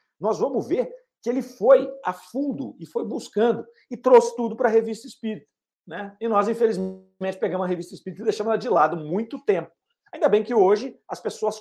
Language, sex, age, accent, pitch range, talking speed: Portuguese, male, 50-69, Brazilian, 155-230 Hz, 200 wpm